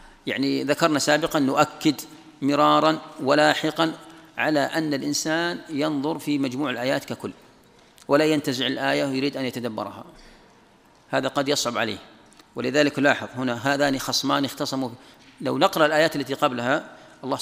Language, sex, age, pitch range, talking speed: Arabic, male, 40-59, 135-165 Hz, 125 wpm